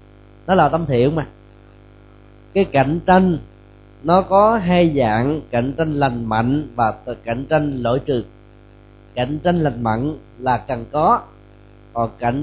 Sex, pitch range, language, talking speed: male, 110-180 Hz, Vietnamese, 145 wpm